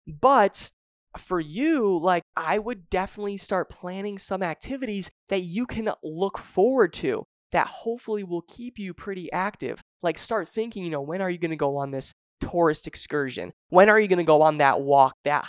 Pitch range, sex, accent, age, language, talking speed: 160-210 Hz, male, American, 20-39, English, 190 wpm